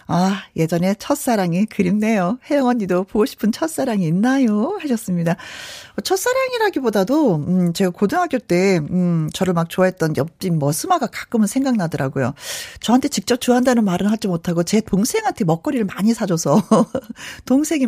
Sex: female